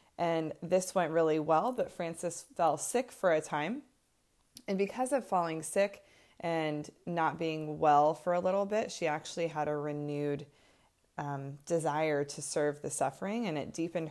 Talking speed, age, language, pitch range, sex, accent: 165 wpm, 20-39, English, 145-175 Hz, female, American